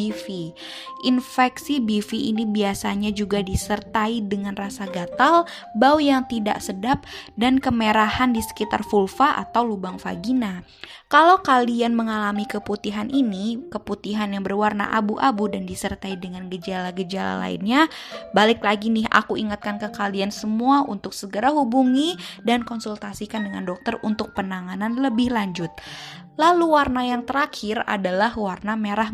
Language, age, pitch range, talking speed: Indonesian, 20-39, 200-250 Hz, 130 wpm